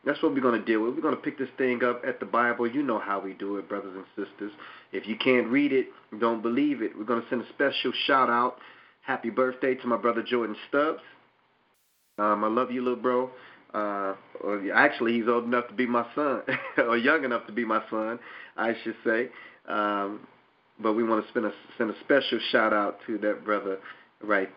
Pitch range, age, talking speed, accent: 100-125 Hz, 30-49, 215 wpm, American